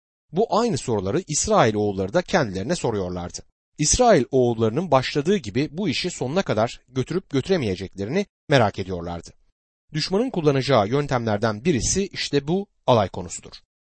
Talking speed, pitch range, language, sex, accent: 120 wpm, 115-185 Hz, Turkish, male, native